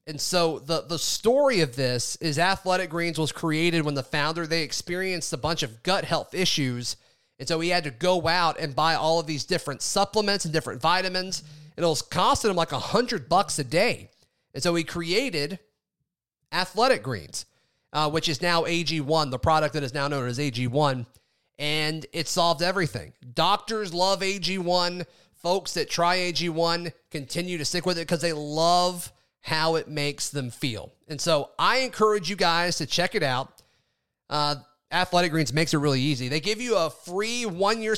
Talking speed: 185 wpm